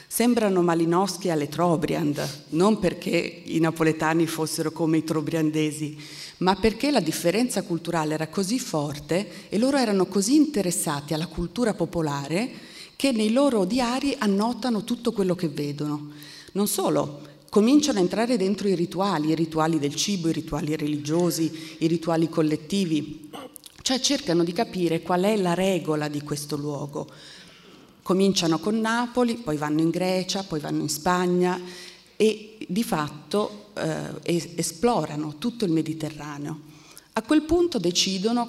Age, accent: 40-59, native